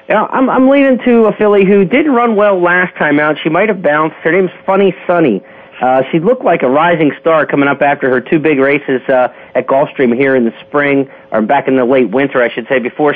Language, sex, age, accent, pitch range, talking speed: English, male, 40-59, American, 130-165 Hz, 240 wpm